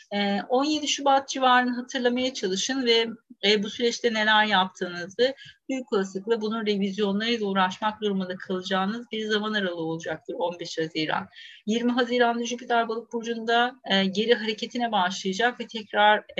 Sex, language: female, Turkish